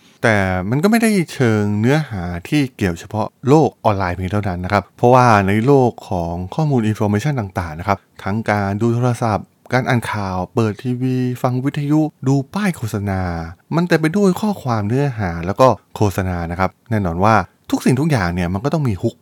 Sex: male